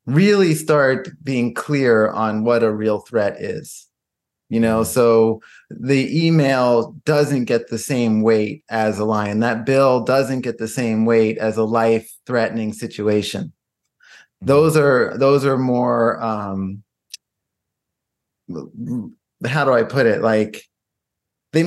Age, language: 30-49, English